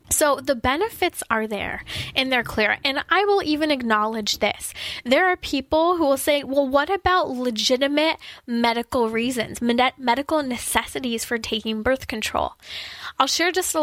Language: English